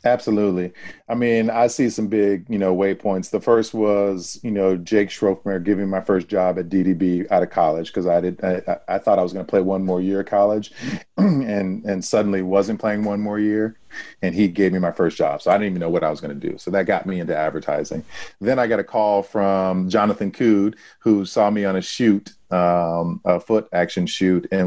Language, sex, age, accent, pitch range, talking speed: English, male, 40-59, American, 85-105 Hz, 230 wpm